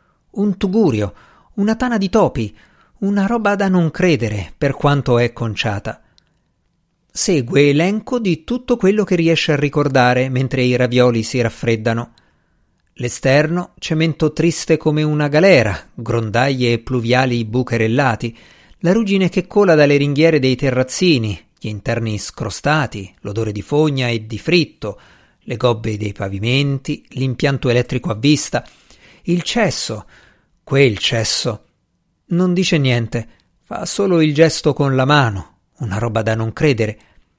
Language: Italian